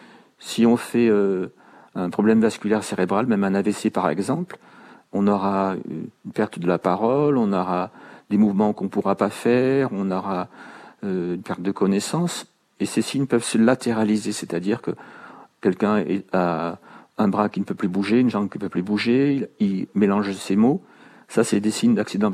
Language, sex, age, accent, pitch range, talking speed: French, male, 40-59, French, 100-120 Hz, 190 wpm